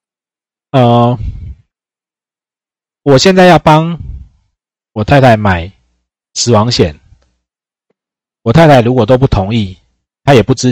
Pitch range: 95-130 Hz